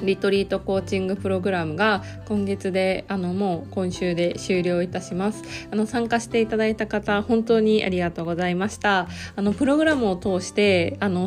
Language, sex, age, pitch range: Japanese, female, 20-39, 175-215 Hz